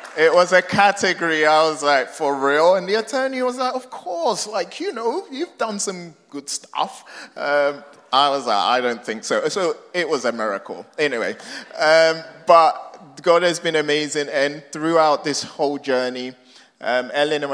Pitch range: 115-145 Hz